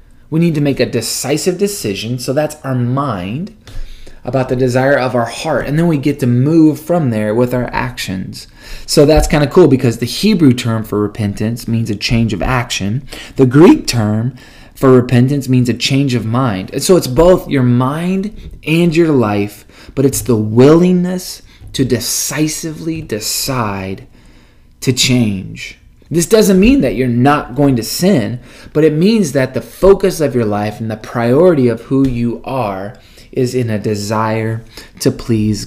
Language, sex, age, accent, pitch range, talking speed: English, male, 20-39, American, 110-140 Hz, 170 wpm